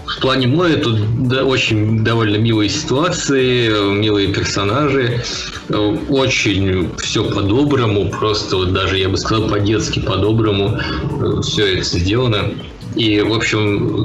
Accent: native